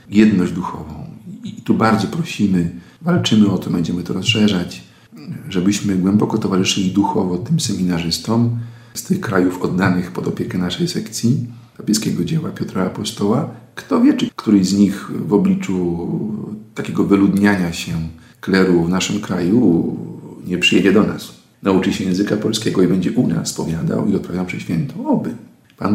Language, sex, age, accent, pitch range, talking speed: Polish, male, 50-69, native, 90-120 Hz, 145 wpm